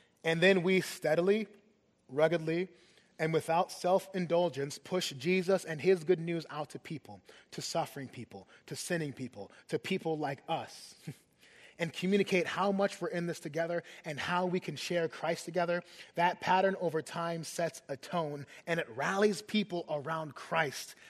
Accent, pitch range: American, 145-180 Hz